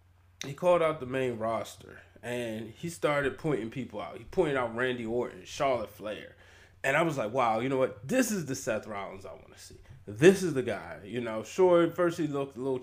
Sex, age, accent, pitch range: male, 20-39, American, 110-155 Hz